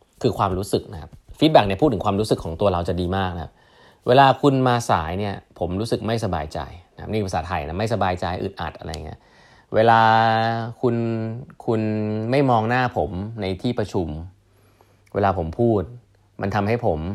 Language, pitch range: Thai, 90-115 Hz